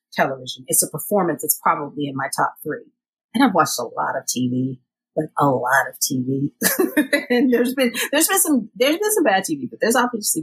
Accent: American